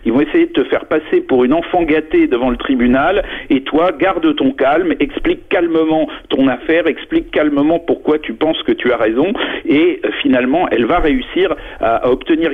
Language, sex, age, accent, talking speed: French, male, 50-69, French, 190 wpm